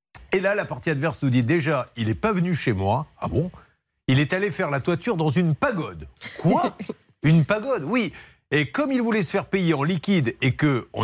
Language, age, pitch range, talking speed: French, 50-69, 145-215 Hz, 215 wpm